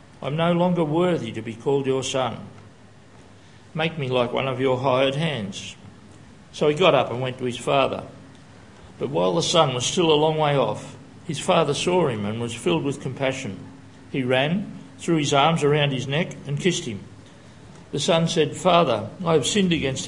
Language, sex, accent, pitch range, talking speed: English, male, Australian, 130-160 Hz, 190 wpm